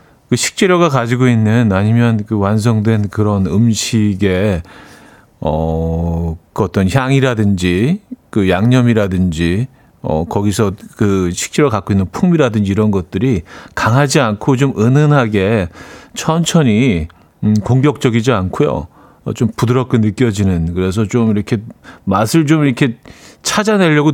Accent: native